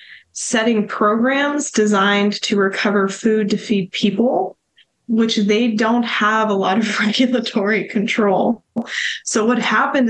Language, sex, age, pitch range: English, female, 20-39, 195-220 Hz